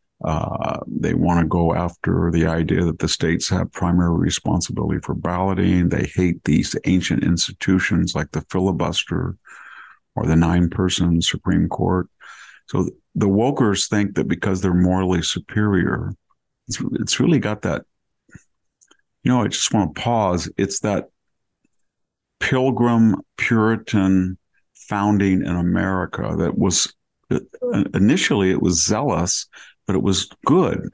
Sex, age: male, 50-69